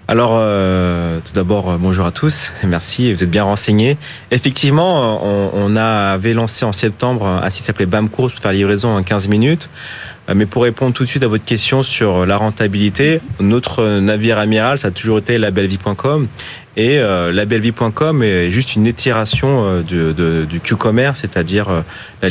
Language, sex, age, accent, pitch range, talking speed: French, male, 30-49, French, 95-120 Hz, 170 wpm